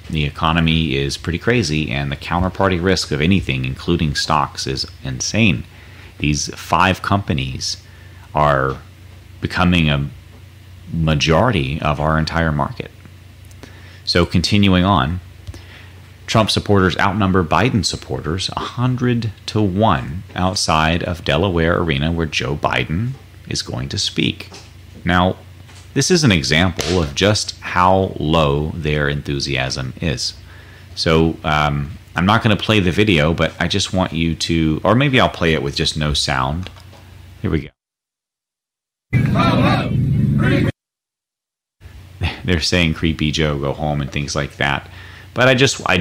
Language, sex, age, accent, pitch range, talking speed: English, male, 30-49, American, 75-95 Hz, 130 wpm